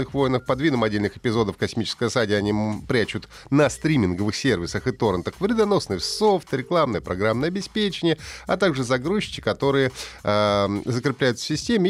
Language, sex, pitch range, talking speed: Russian, male, 105-140 Hz, 130 wpm